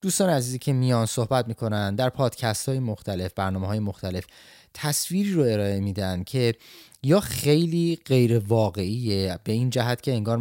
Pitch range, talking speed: 105-130 Hz, 155 wpm